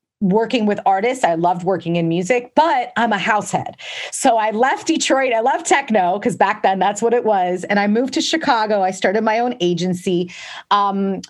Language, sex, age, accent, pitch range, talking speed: English, female, 30-49, American, 180-220 Hz, 195 wpm